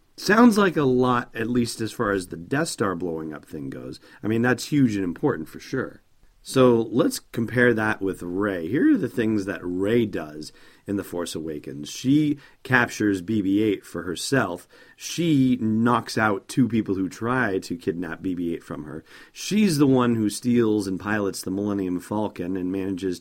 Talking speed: 180 wpm